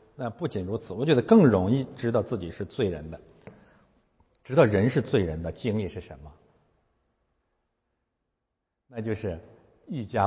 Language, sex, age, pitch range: Chinese, male, 60-79, 90-120 Hz